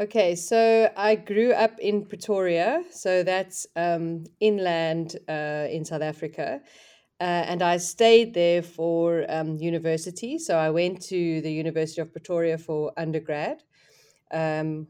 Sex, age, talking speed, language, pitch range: female, 30-49, 135 wpm, English, 165-195 Hz